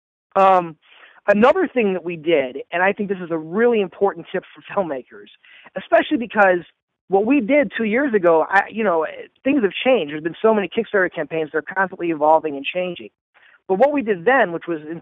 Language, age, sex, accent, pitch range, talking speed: English, 40-59, male, American, 170-225 Hz, 205 wpm